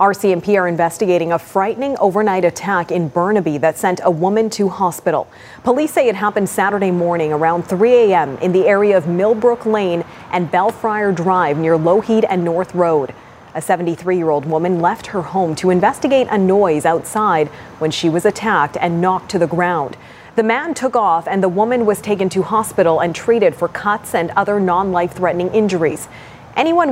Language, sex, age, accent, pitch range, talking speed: English, female, 30-49, American, 175-215 Hz, 175 wpm